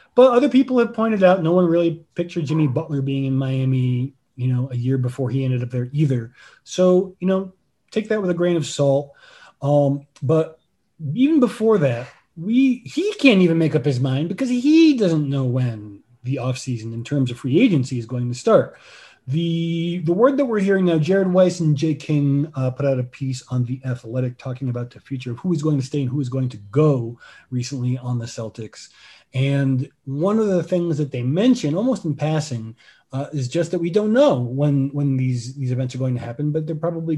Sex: male